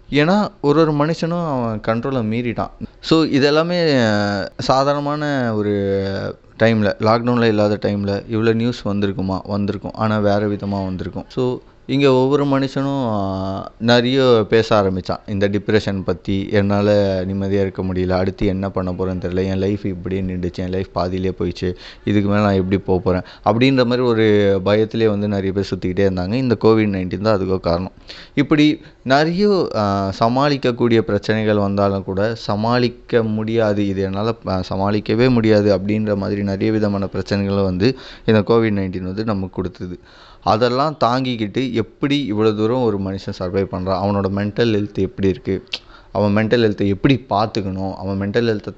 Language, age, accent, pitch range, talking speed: Tamil, 20-39, native, 95-120 Hz, 145 wpm